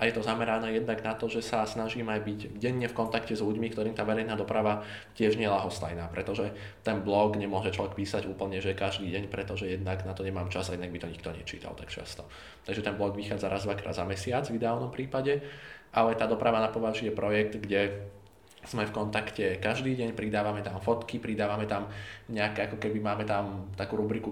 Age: 20-39